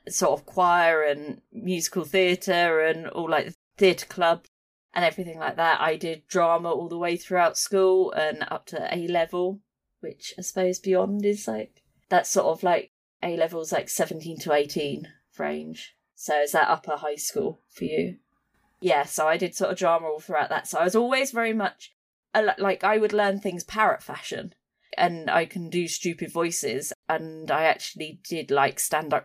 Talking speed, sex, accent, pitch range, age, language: 185 wpm, female, British, 165-205 Hz, 20-39, English